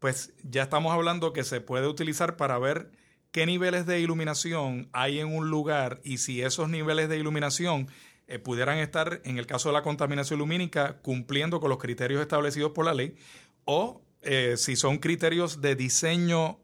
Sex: male